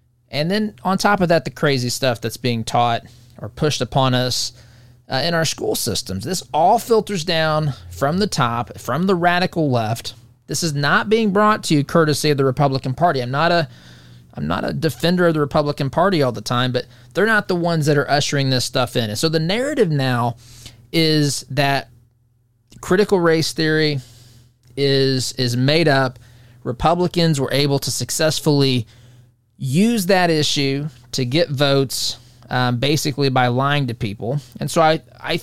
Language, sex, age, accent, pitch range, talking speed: English, male, 20-39, American, 120-155 Hz, 175 wpm